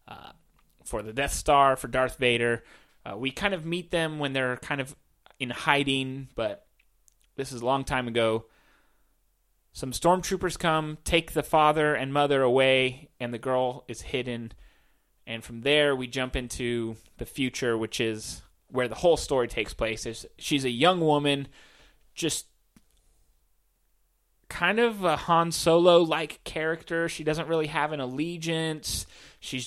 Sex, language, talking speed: male, English, 150 wpm